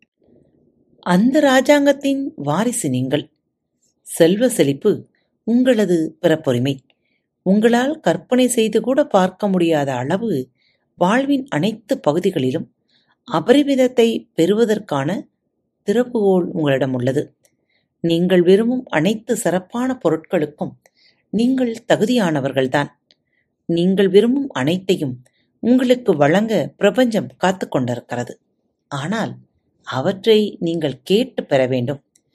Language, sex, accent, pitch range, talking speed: Tamil, female, native, 145-230 Hz, 80 wpm